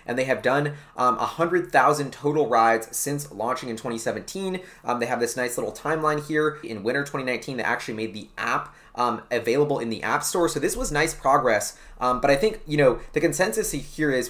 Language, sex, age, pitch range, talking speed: English, male, 20-39, 120-150 Hz, 205 wpm